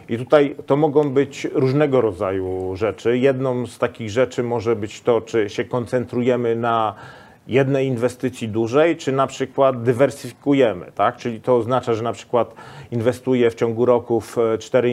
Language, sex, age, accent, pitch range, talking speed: Polish, male, 40-59, native, 120-140 Hz, 155 wpm